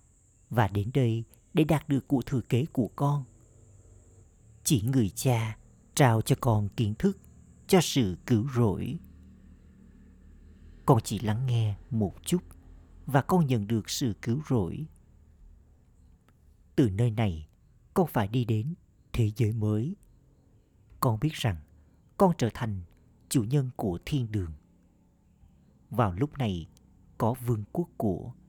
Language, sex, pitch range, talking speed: Vietnamese, male, 100-135 Hz, 135 wpm